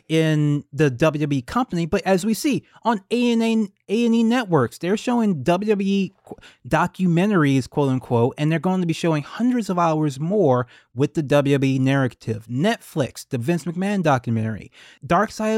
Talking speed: 145 wpm